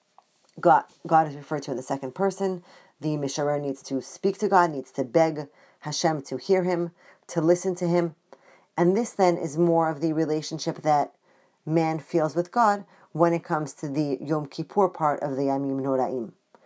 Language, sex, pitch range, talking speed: English, female, 150-175 Hz, 185 wpm